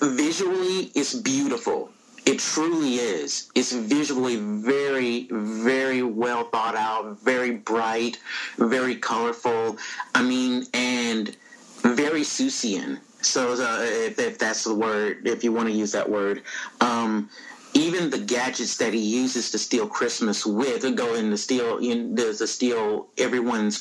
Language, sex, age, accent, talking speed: English, male, 40-59, American, 140 wpm